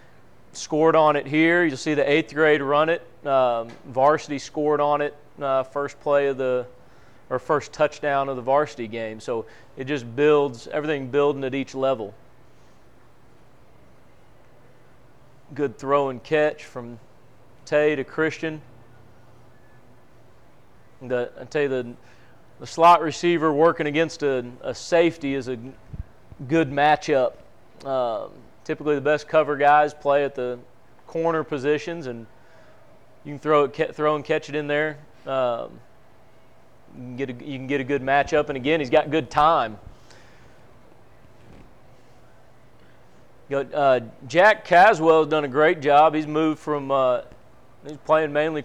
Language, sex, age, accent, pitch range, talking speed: English, male, 40-59, American, 130-155 Hz, 145 wpm